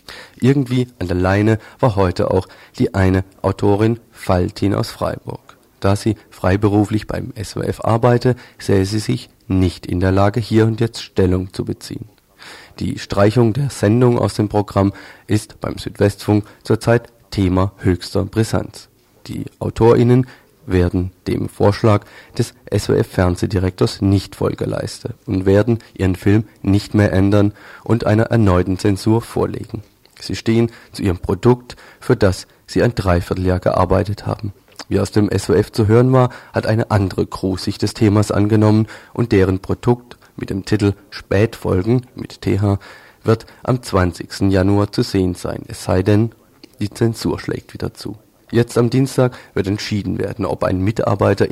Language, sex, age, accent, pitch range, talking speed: German, male, 40-59, German, 95-115 Hz, 150 wpm